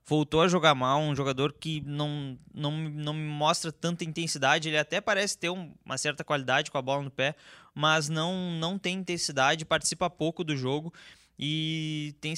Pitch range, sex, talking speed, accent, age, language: 145-175 Hz, male, 180 wpm, Brazilian, 20-39, Portuguese